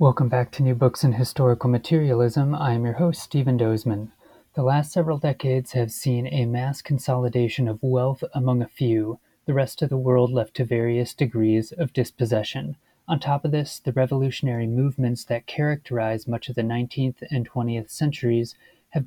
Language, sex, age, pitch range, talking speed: English, male, 30-49, 120-145 Hz, 175 wpm